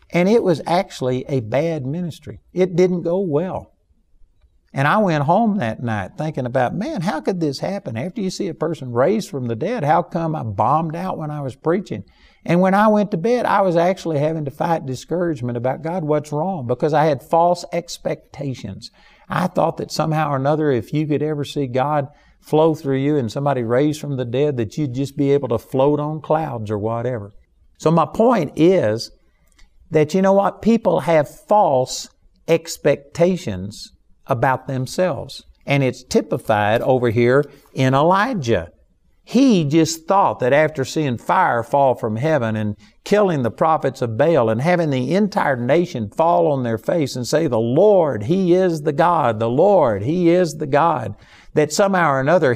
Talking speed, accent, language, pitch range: 185 wpm, American, English, 130-170 Hz